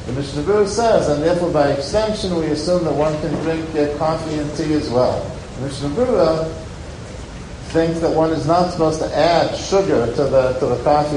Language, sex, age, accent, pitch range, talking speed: English, male, 50-69, American, 145-170 Hz, 185 wpm